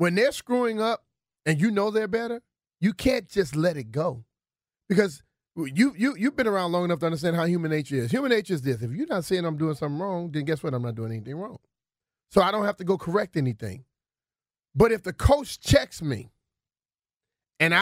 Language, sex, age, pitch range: English, male, 30-49, 155-205 Hz